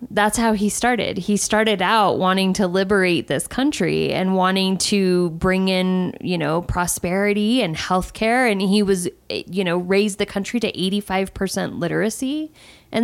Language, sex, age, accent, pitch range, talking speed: English, female, 20-39, American, 180-215 Hz, 170 wpm